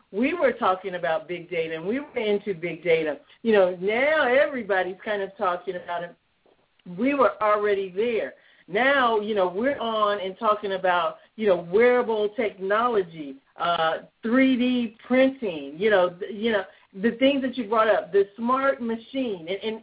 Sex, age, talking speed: female, 50-69, 170 wpm